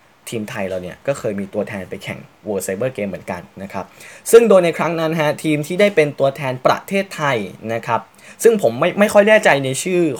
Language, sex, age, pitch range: Thai, male, 10-29, 115-170 Hz